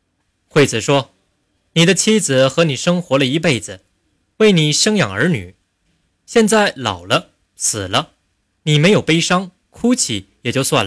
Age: 20-39